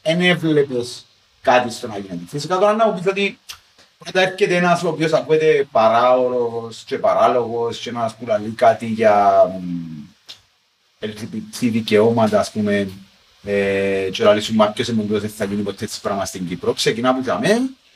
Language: Greek